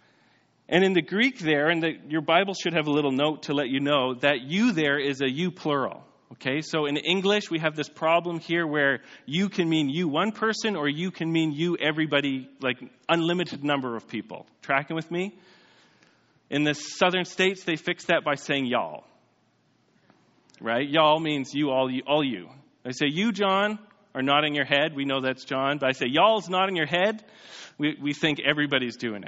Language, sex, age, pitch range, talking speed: English, male, 40-59, 145-195 Hz, 195 wpm